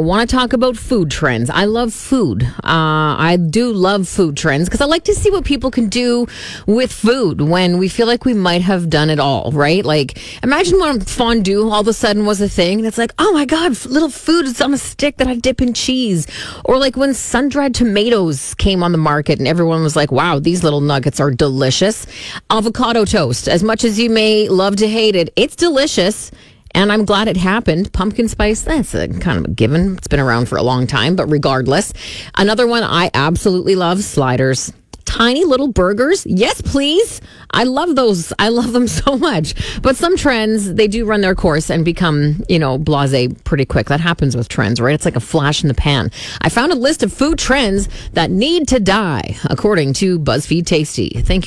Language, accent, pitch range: English, American, 150-235 Hz